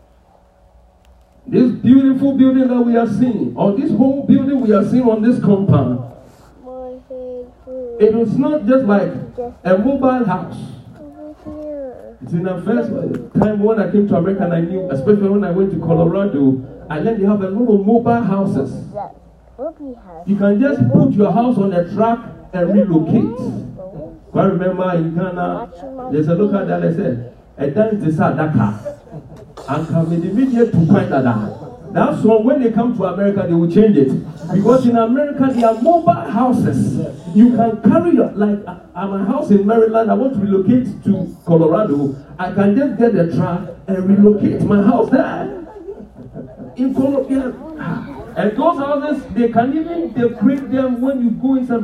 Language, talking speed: English, 170 wpm